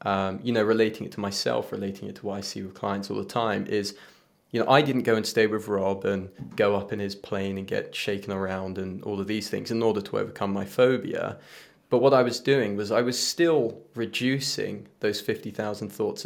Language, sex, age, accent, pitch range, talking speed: English, male, 20-39, British, 100-120 Hz, 225 wpm